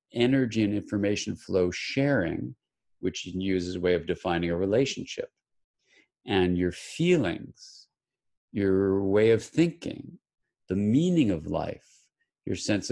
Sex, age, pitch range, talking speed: male, 50-69, 95-120 Hz, 135 wpm